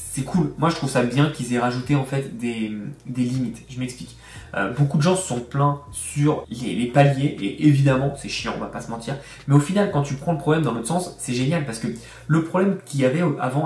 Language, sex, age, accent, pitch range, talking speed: French, male, 20-39, French, 125-160 Hz, 255 wpm